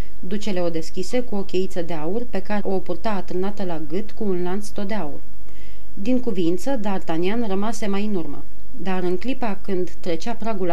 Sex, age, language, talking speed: female, 30-49, Romanian, 190 wpm